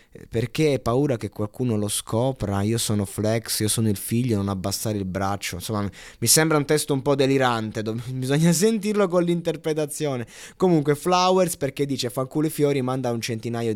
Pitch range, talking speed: 105-145 Hz, 180 wpm